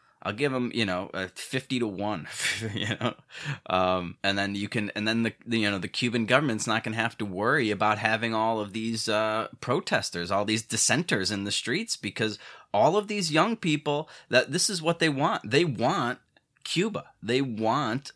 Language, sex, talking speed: English, male, 195 wpm